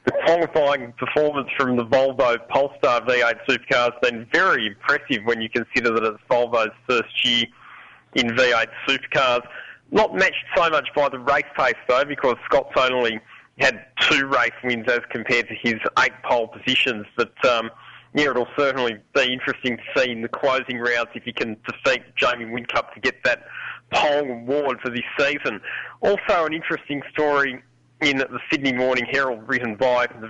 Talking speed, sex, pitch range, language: 170 wpm, male, 115-135 Hz, English